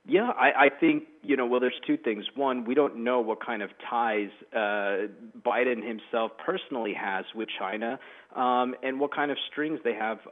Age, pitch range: 40-59, 110-135 Hz